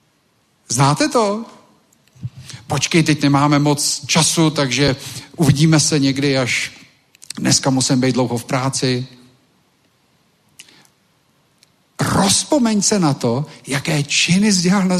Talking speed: 110 wpm